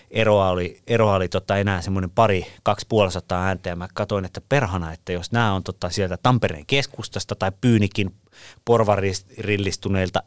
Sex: male